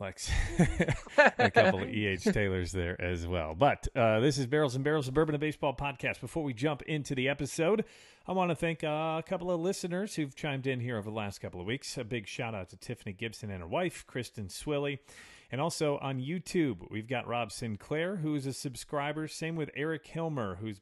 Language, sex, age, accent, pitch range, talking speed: English, male, 40-59, American, 105-155 Hz, 215 wpm